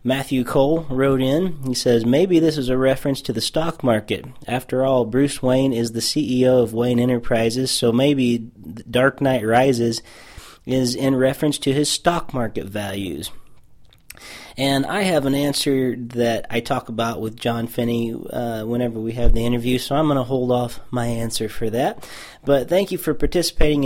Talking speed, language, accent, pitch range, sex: 180 wpm, English, American, 115-140 Hz, male